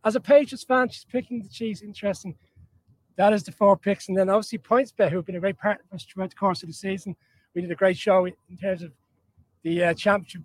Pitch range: 155-190 Hz